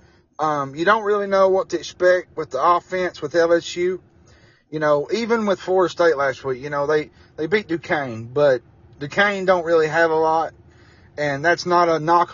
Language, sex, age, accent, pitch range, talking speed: English, male, 30-49, American, 140-185 Hz, 190 wpm